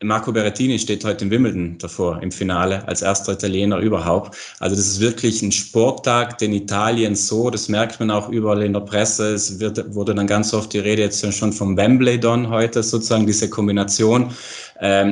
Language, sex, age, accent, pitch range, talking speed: German, male, 30-49, German, 100-115 Hz, 185 wpm